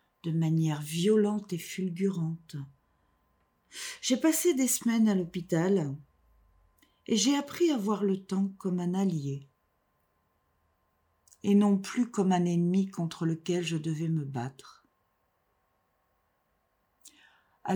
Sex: female